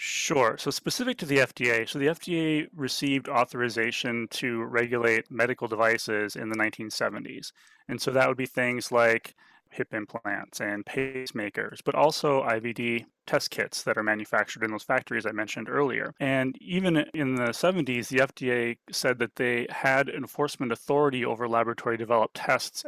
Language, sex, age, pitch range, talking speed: English, male, 30-49, 115-135 Hz, 155 wpm